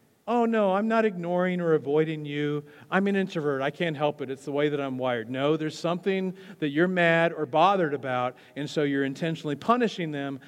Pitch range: 135-160 Hz